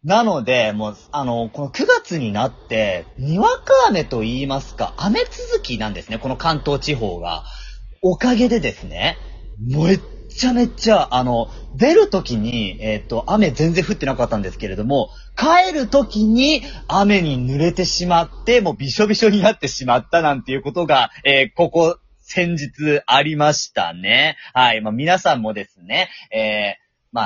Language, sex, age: Japanese, male, 30-49